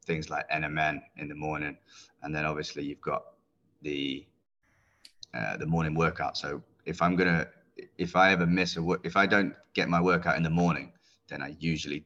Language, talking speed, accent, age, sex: English, 185 wpm, British, 20-39, male